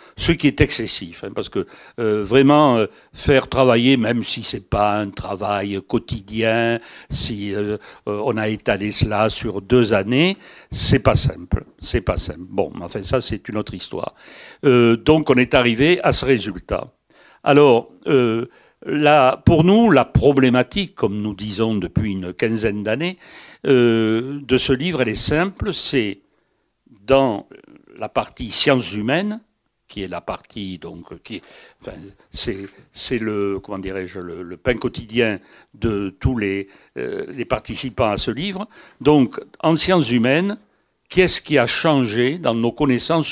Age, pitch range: 60-79, 105-140 Hz